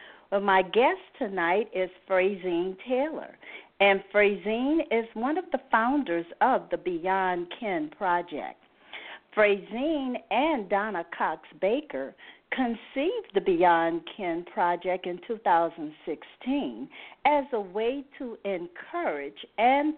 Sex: female